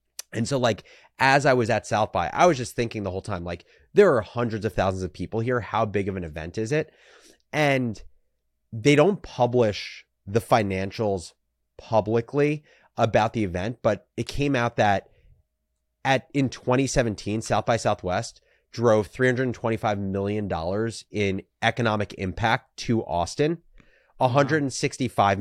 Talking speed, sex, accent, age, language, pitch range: 145 wpm, male, American, 30-49, English, 100-130 Hz